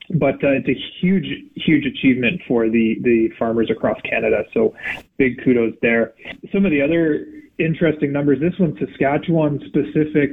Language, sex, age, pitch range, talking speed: English, male, 20-39, 120-150 Hz, 150 wpm